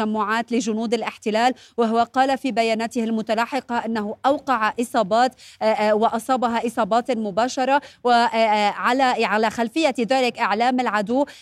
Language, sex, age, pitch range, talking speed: Arabic, female, 30-49, 230-260 Hz, 105 wpm